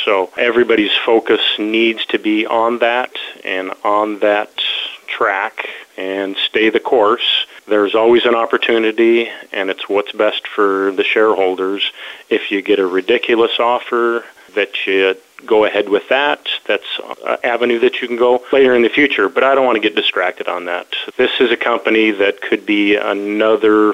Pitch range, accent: 105-120 Hz, American